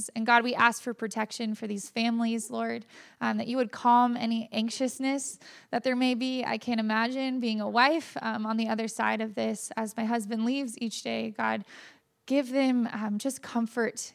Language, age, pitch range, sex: English, 20-39, 220-245 Hz, female